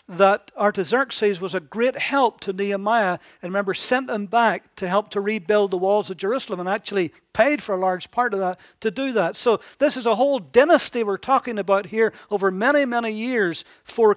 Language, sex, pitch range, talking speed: English, male, 175-220 Hz, 205 wpm